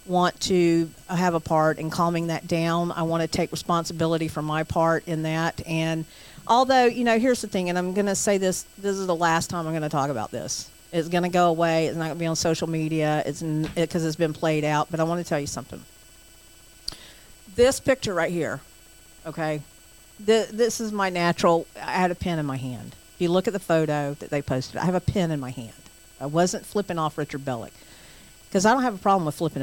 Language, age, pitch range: English, 50-69, 155-190 Hz